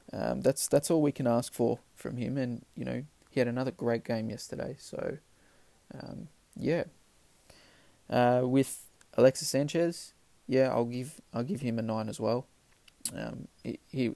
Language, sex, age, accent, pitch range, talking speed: English, male, 20-39, Australian, 110-130 Hz, 160 wpm